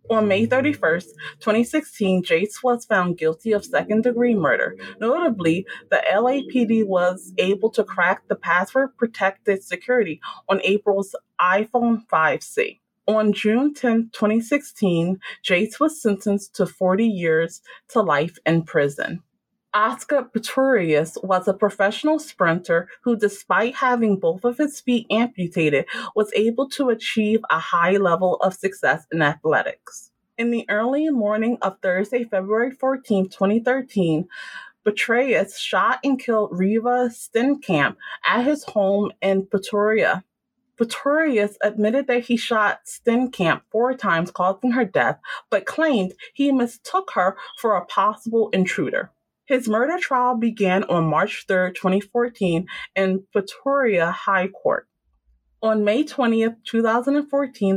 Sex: female